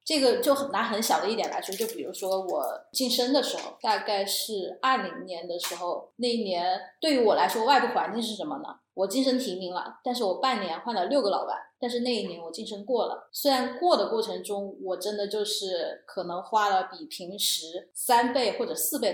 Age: 20-39